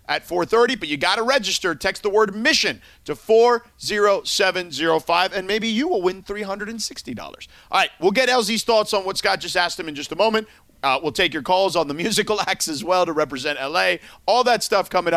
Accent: American